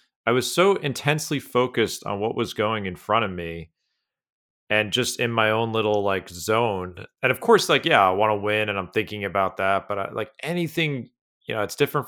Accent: American